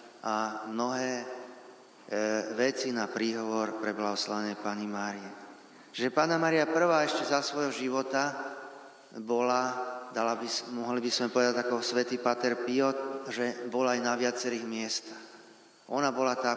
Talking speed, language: 140 wpm, Slovak